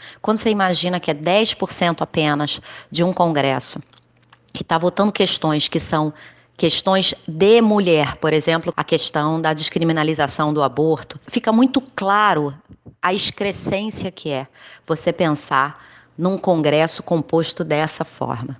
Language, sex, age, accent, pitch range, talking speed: Portuguese, female, 30-49, Brazilian, 150-200 Hz, 130 wpm